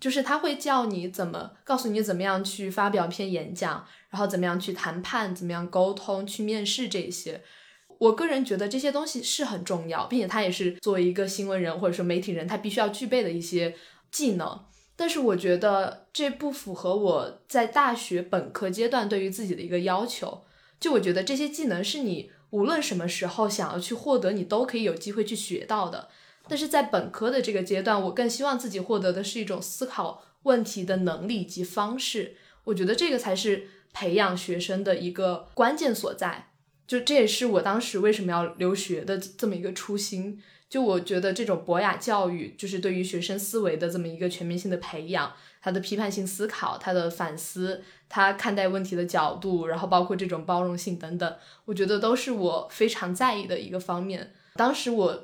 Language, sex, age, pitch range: Chinese, female, 20-39, 180-220 Hz